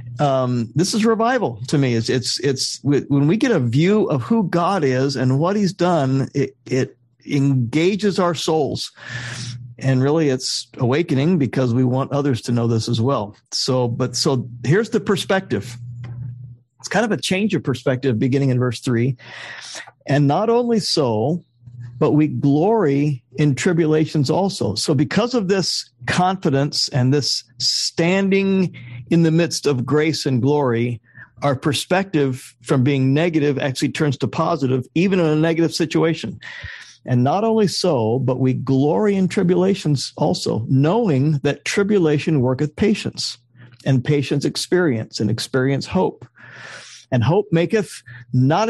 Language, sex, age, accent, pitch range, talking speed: English, male, 50-69, American, 125-165 Hz, 150 wpm